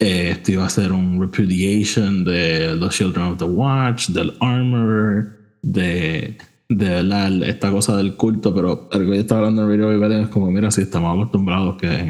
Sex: male